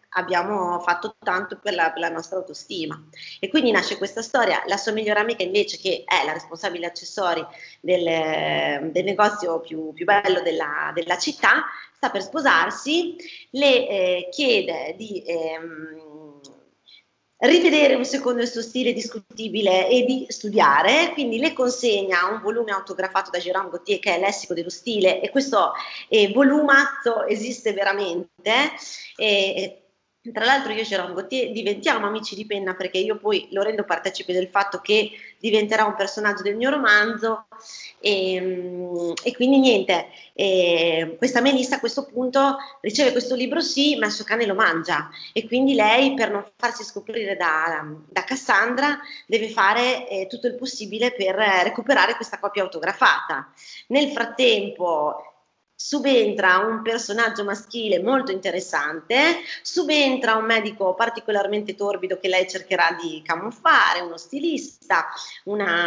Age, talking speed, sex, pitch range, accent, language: 20-39, 145 wpm, female, 185-245 Hz, Italian, English